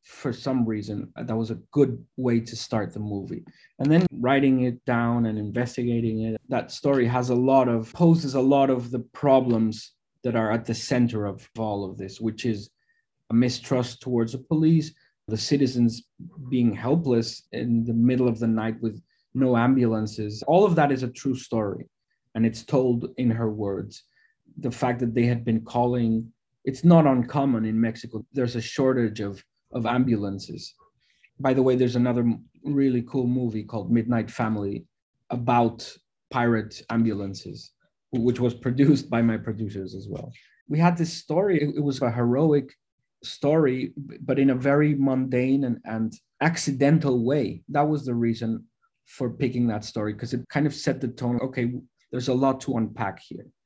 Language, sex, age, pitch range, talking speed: English, male, 20-39, 110-135 Hz, 170 wpm